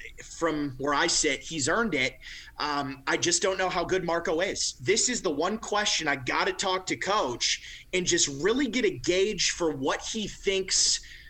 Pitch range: 150-200 Hz